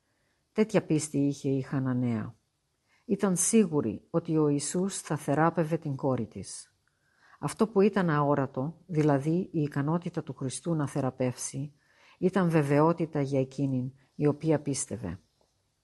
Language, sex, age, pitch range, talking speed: Greek, female, 50-69, 140-170 Hz, 125 wpm